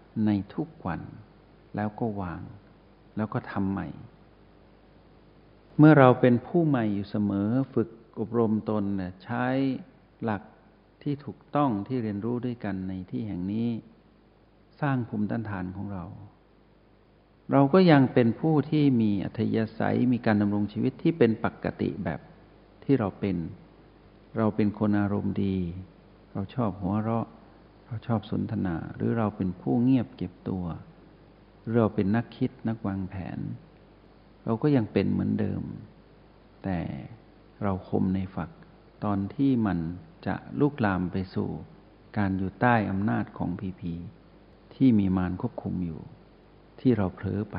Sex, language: male, Thai